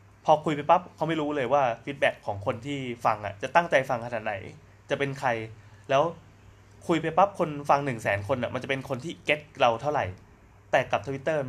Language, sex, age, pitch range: Thai, male, 20-39, 105-145 Hz